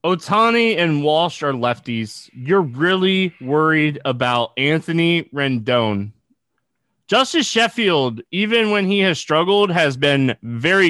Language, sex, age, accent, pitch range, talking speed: English, male, 20-39, American, 125-175 Hz, 115 wpm